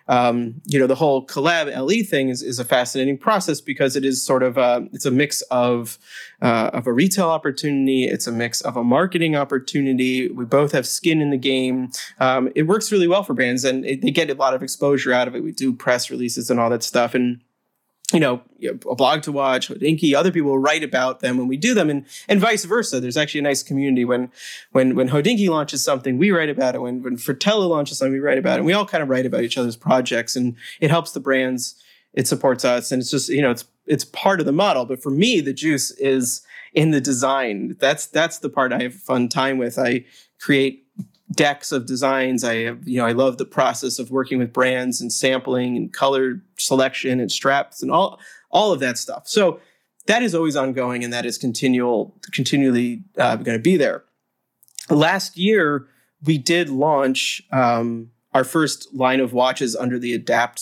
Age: 30-49